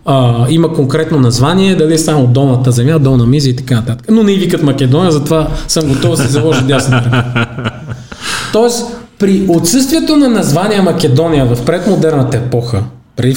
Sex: male